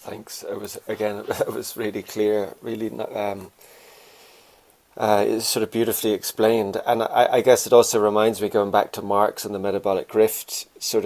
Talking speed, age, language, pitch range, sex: 185 wpm, 30-49, English, 95-110 Hz, male